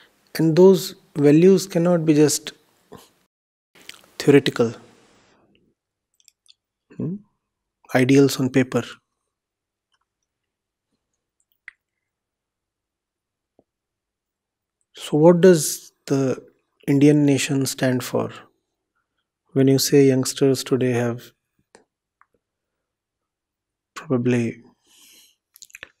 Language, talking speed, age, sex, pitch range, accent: English, 60 wpm, 30-49, male, 130-185 Hz, Indian